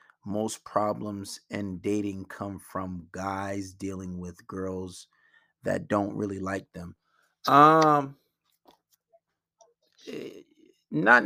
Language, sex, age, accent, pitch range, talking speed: English, male, 30-49, American, 105-120 Hz, 90 wpm